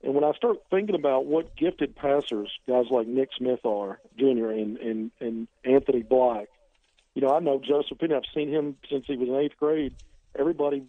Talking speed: 195 wpm